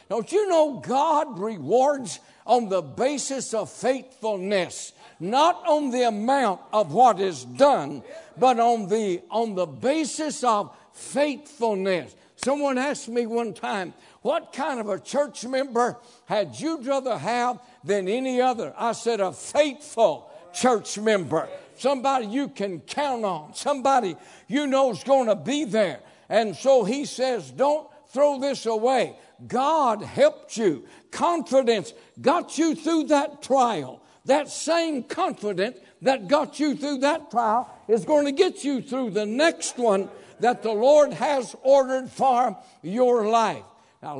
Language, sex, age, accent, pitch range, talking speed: English, male, 60-79, American, 215-280 Hz, 145 wpm